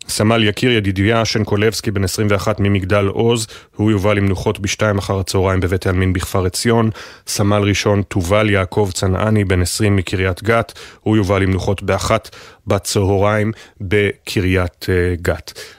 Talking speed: 130 wpm